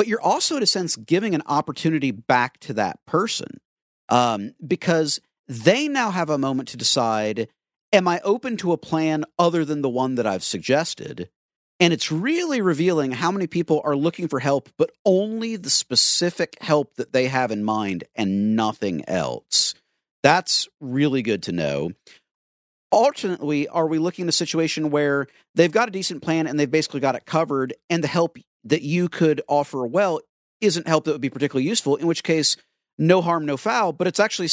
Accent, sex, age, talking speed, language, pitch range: American, male, 50-69, 190 wpm, English, 135-180 Hz